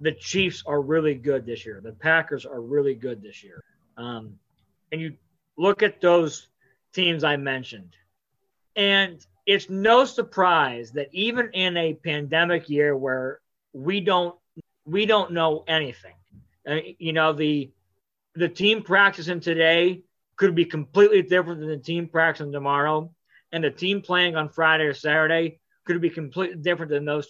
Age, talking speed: 40-59, 155 wpm